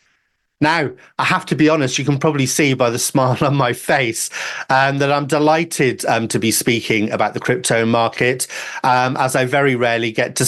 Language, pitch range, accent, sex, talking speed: English, 110-150 Hz, British, male, 200 wpm